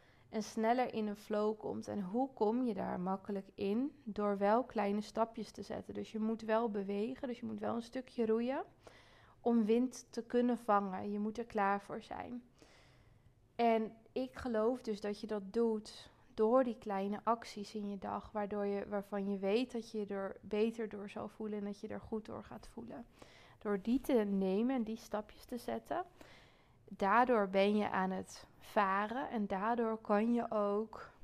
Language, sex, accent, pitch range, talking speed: Dutch, female, Dutch, 200-225 Hz, 185 wpm